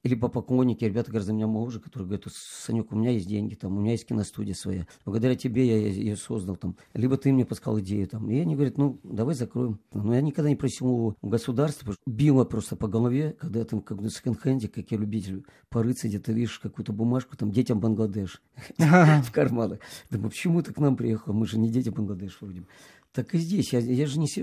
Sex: male